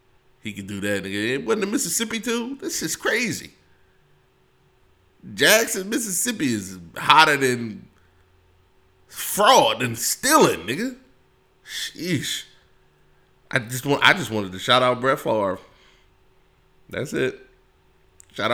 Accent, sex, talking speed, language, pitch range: American, male, 125 wpm, English, 125-190 Hz